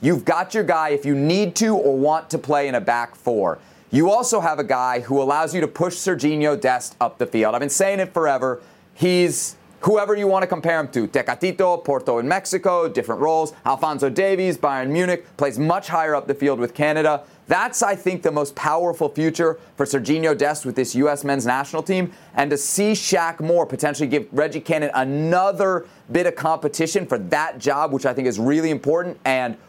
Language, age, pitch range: English, 30-49, 140-180 Hz